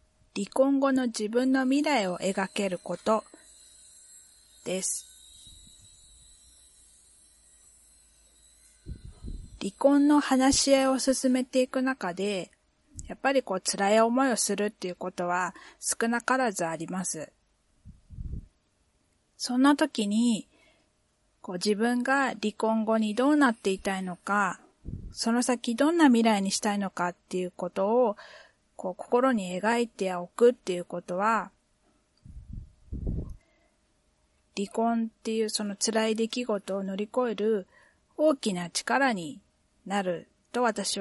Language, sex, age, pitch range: Japanese, female, 40-59, 175-250 Hz